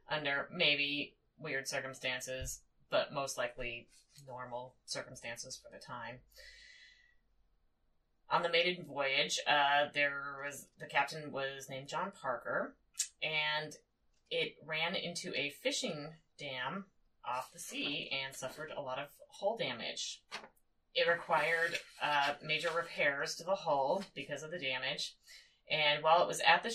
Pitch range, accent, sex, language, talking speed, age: 135-170 Hz, American, female, English, 135 wpm, 30-49